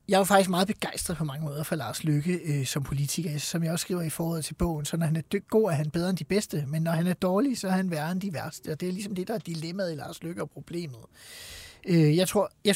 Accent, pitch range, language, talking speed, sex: native, 160-205 Hz, Danish, 295 wpm, male